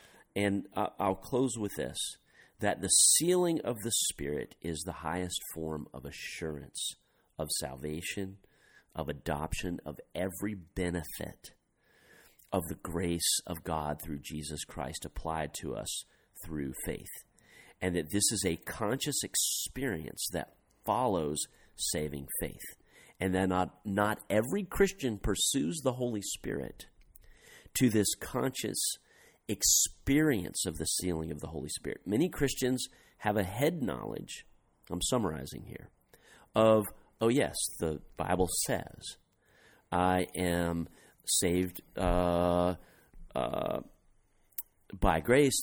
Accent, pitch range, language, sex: American, 85-110 Hz, English, male